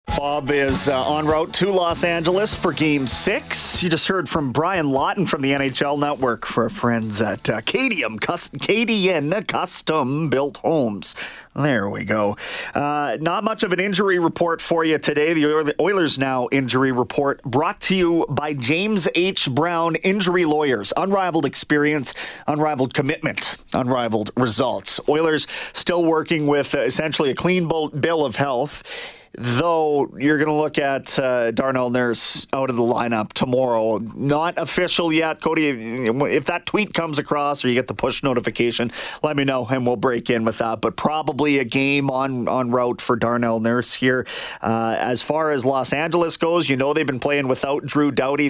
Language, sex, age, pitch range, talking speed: English, male, 30-49, 130-160 Hz, 170 wpm